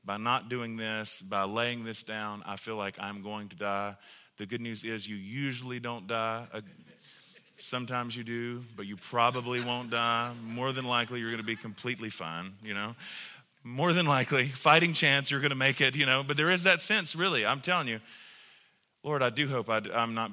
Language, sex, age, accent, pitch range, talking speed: English, male, 30-49, American, 110-145 Hz, 225 wpm